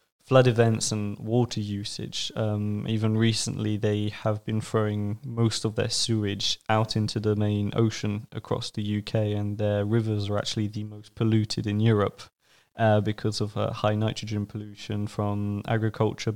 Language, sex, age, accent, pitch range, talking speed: German, male, 20-39, British, 105-120 Hz, 160 wpm